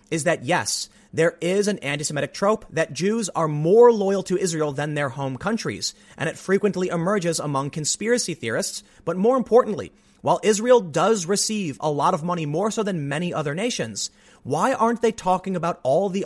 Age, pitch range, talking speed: 30-49, 150-215 Hz, 185 wpm